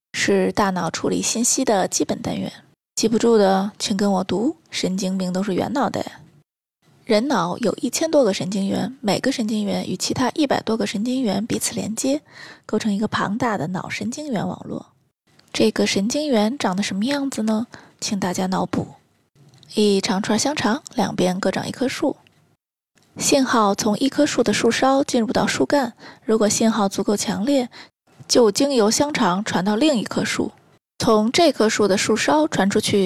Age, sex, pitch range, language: 20-39, female, 200-255 Hz, Chinese